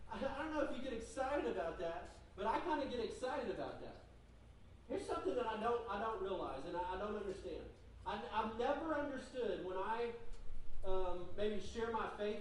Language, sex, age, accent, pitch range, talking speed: English, male, 40-59, American, 180-270 Hz, 200 wpm